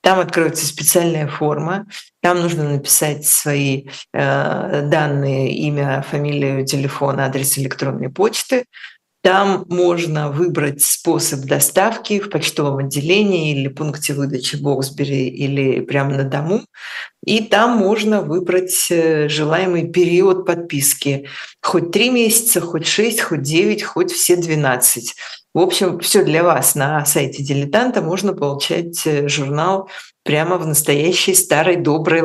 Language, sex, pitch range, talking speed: Russian, female, 145-185 Hz, 125 wpm